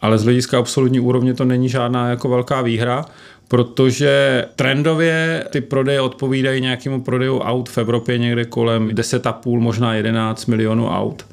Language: Czech